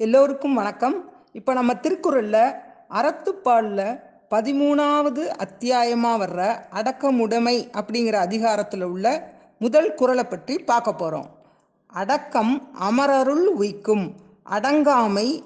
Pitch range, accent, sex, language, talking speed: 205-265 Hz, native, female, Tamil, 85 wpm